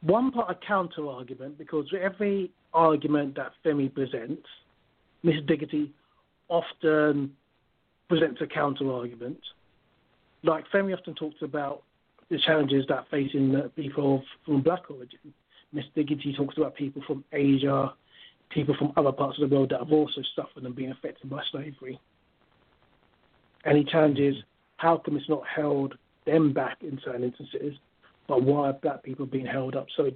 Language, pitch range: English, 135-160 Hz